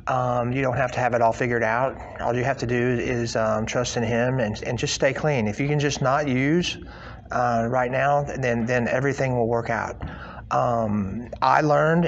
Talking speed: 215 wpm